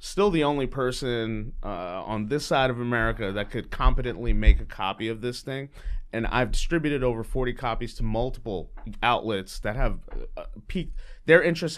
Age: 30-49